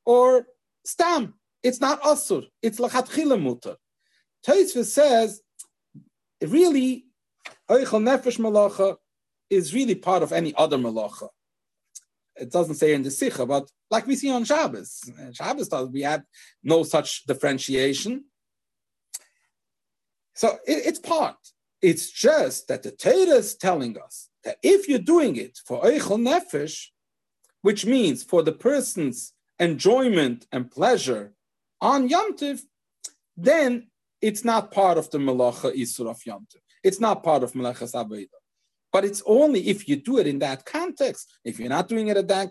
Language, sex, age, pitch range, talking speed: English, male, 40-59, 165-265 Hz, 145 wpm